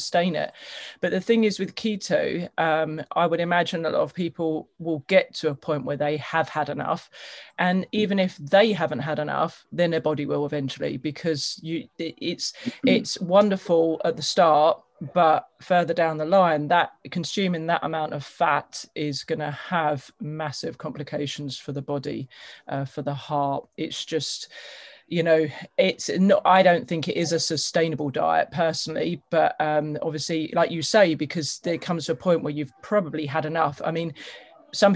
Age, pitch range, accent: 30-49, 155-185 Hz, British